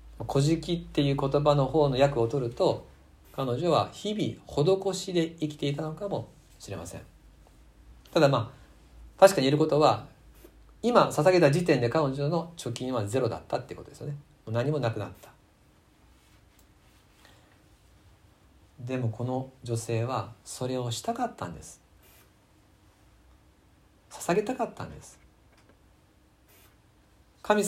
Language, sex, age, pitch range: Japanese, male, 50-69, 100-145 Hz